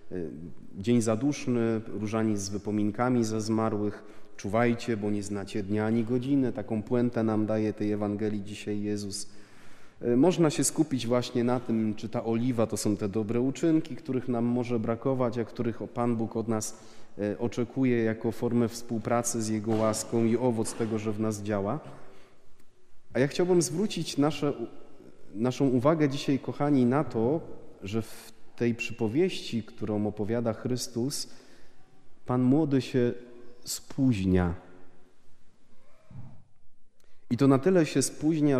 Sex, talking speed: male, 135 wpm